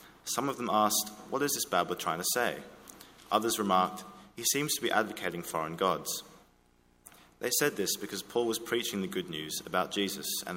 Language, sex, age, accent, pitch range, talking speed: English, male, 20-39, British, 90-115 Hz, 185 wpm